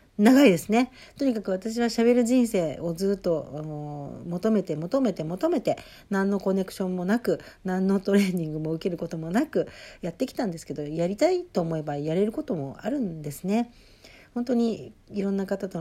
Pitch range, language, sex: 165-220 Hz, Japanese, female